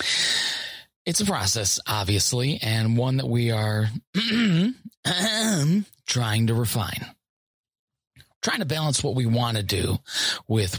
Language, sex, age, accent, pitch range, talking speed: English, male, 30-49, American, 105-145 Hz, 115 wpm